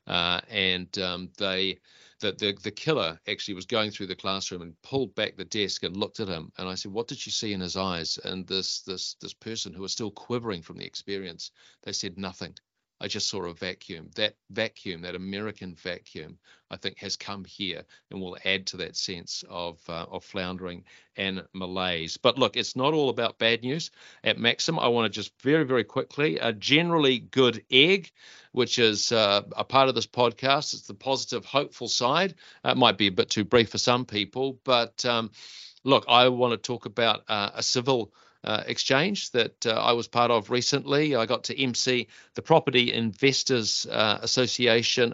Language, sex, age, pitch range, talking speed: English, male, 40-59, 100-130 Hz, 200 wpm